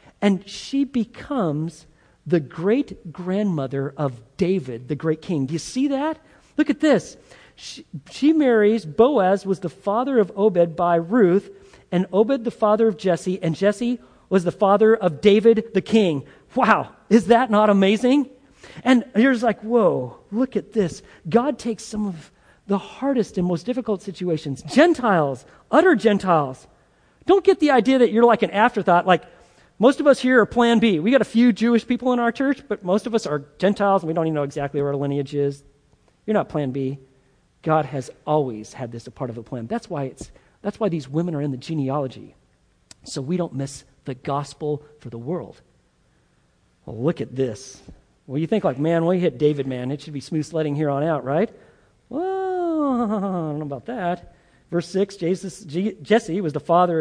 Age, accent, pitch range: 40-59, American, 150-230 Hz